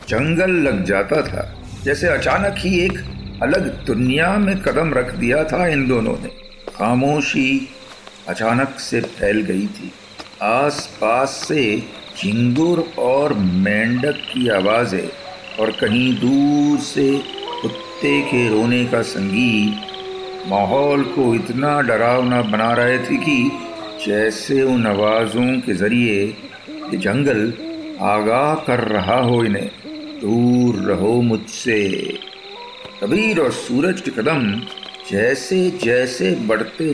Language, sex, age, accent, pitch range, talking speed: Hindi, male, 50-69, native, 120-180 Hz, 115 wpm